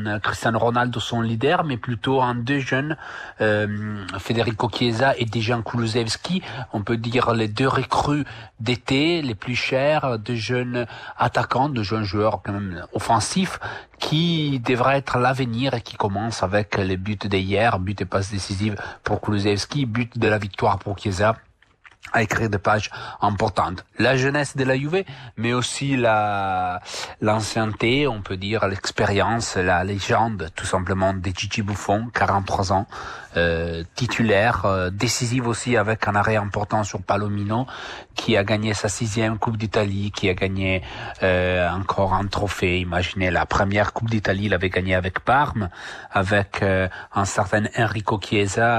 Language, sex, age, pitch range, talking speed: English, male, 40-59, 100-120 Hz, 155 wpm